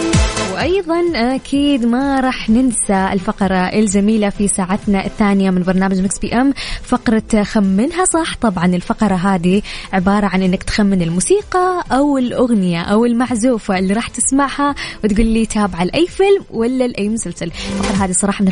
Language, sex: English, female